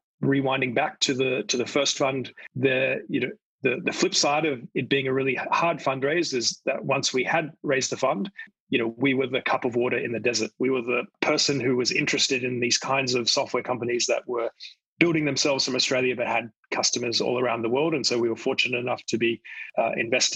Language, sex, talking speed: English, male, 225 wpm